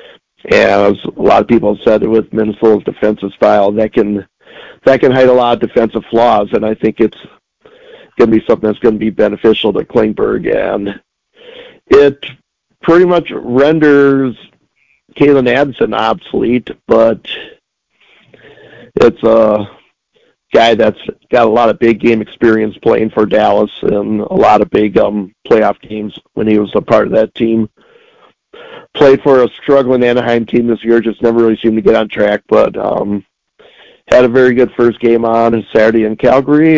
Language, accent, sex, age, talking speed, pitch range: English, American, male, 50-69, 165 wpm, 110-130 Hz